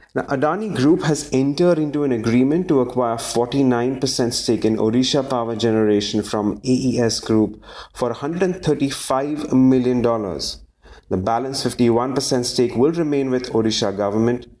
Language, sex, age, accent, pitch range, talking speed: English, male, 30-49, Indian, 115-140 Hz, 125 wpm